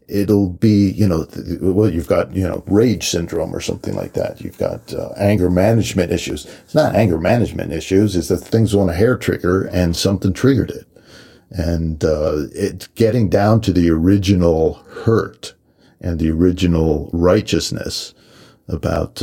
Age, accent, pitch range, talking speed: 50-69, American, 85-110 Hz, 160 wpm